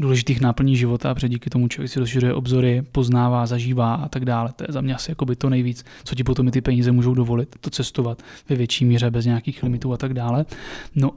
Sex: male